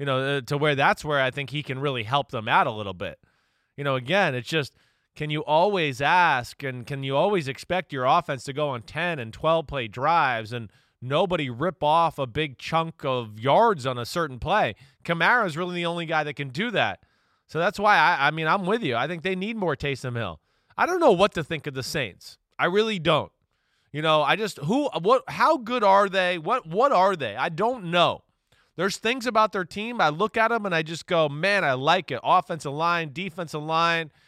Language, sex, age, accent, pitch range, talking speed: English, male, 20-39, American, 145-190 Hz, 230 wpm